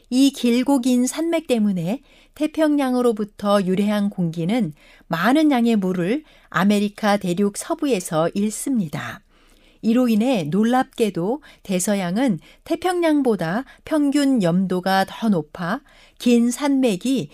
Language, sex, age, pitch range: Korean, female, 60-79, 205-275 Hz